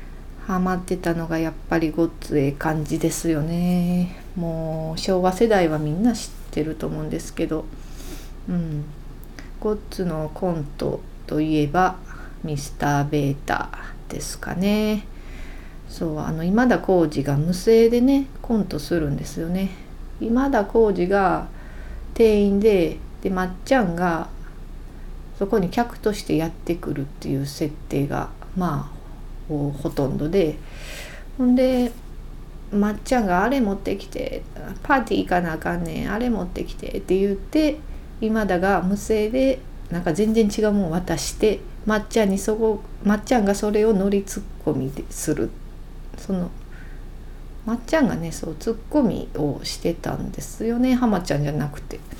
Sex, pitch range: female, 155-215 Hz